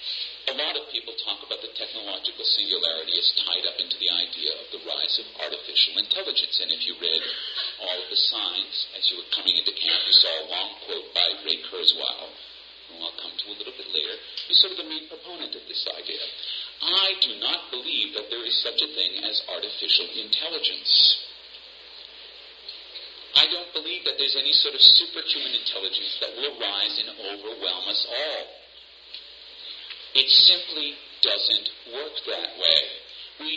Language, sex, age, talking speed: English, male, 40-59, 175 wpm